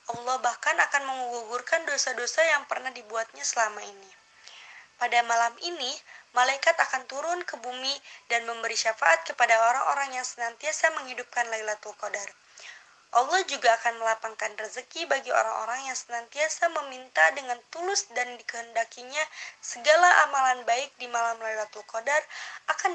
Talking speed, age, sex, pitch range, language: 130 wpm, 20-39, female, 230-300 Hz, Indonesian